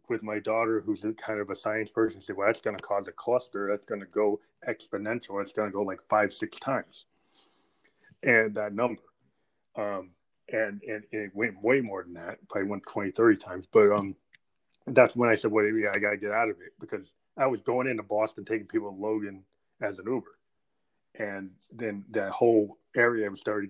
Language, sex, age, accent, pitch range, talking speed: English, male, 30-49, American, 105-115 Hz, 210 wpm